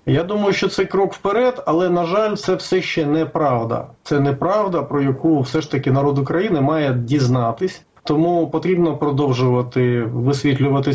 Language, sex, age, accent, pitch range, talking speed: Ukrainian, male, 30-49, native, 135-170 Hz, 155 wpm